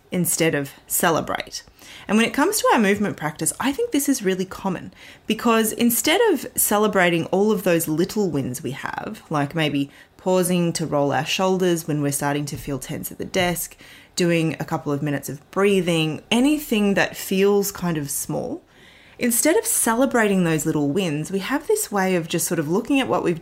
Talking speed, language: 190 wpm, English